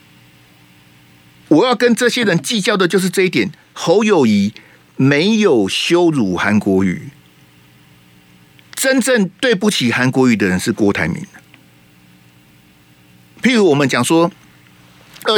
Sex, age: male, 50-69